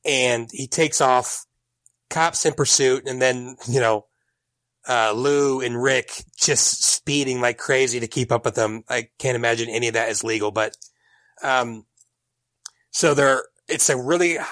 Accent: American